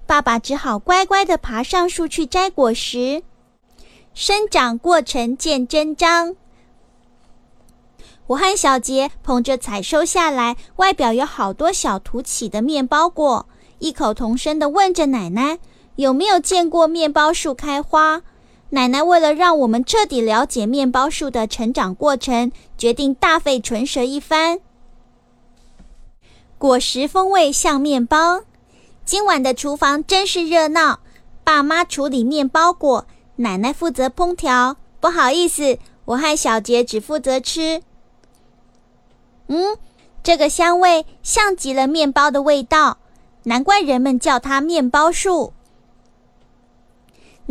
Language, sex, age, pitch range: Chinese, female, 20-39, 255-335 Hz